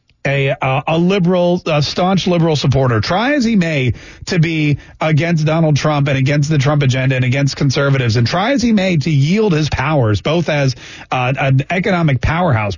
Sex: male